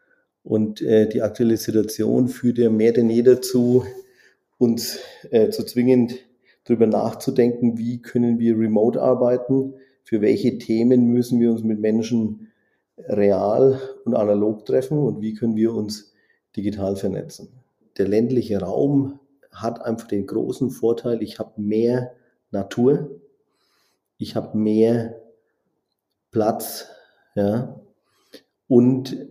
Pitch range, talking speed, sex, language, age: 110-125 Hz, 120 wpm, male, German, 40-59